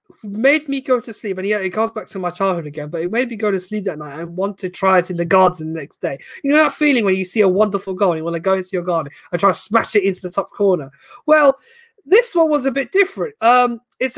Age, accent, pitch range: 20-39, British, 180-250 Hz